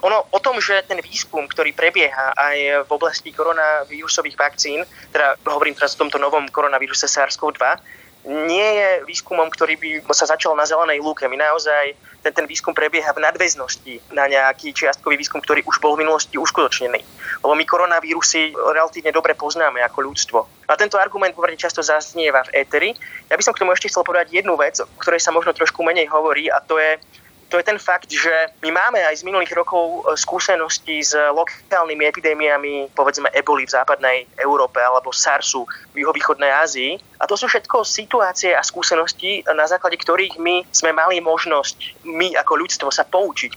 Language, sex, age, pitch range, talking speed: Slovak, male, 20-39, 150-180 Hz, 180 wpm